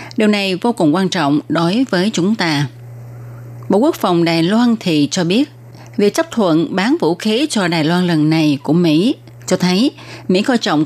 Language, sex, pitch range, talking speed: Vietnamese, female, 150-200 Hz, 200 wpm